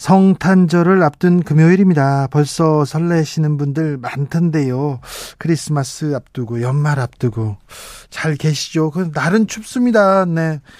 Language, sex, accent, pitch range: Korean, male, native, 135-170 Hz